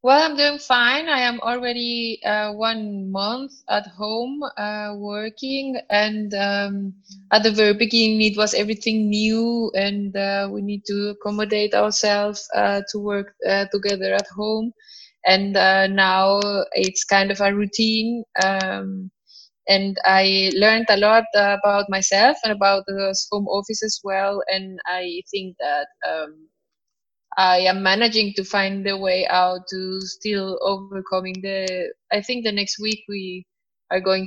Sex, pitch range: female, 190-220 Hz